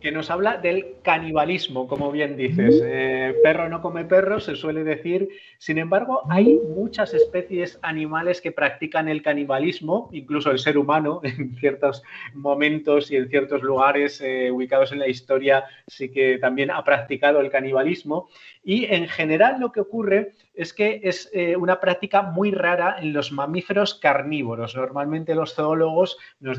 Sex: male